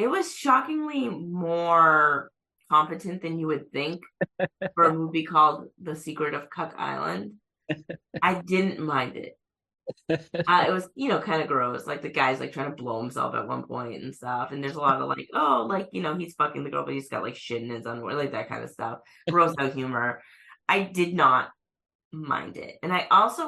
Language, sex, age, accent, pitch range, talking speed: English, female, 20-39, American, 145-190 Hz, 210 wpm